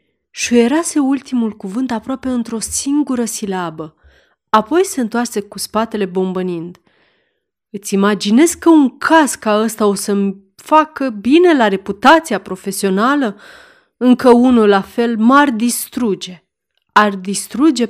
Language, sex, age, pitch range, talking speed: Romanian, female, 30-49, 195-265 Hz, 115 wpm